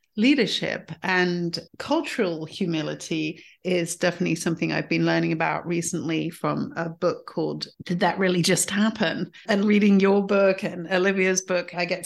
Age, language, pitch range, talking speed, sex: 40-59, English, 170-205 Hz, 150 wpm, female